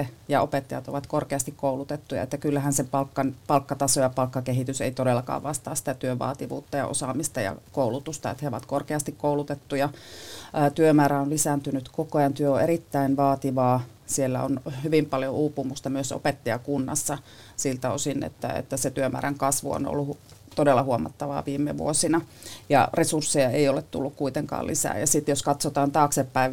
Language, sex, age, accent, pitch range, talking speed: Finnish, female, 30-49, native, 135-150 Hz, 150 wpm